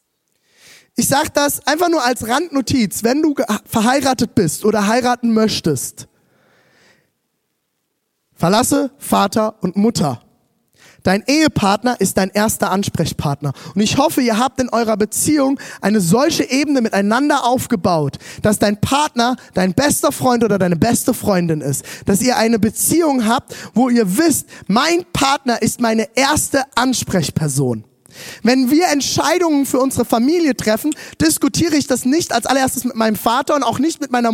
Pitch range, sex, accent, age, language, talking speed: 185-270 Hz, male, German, 20-39, German, 145 wpm